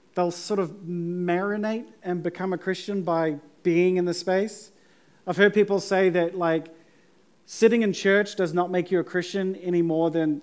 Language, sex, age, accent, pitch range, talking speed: English, male, 40-59, Australian, 160-195 Hz, 180 wpm